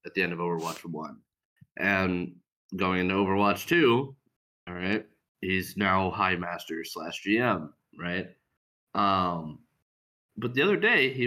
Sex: male